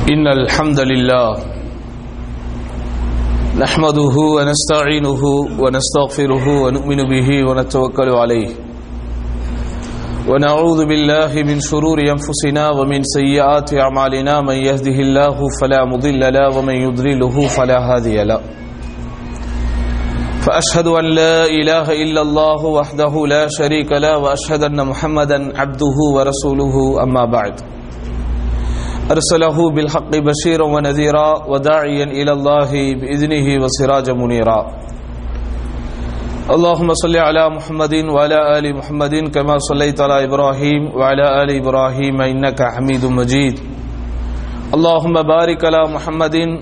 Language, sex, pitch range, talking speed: English, male, 125-150 Hz, 100 wpm